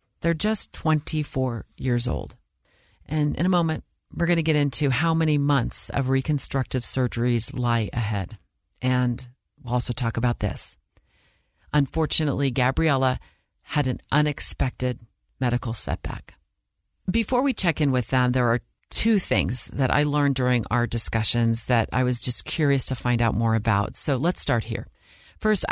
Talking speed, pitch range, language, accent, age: 155 wpm, 110-140 Hz, English, American, 40-59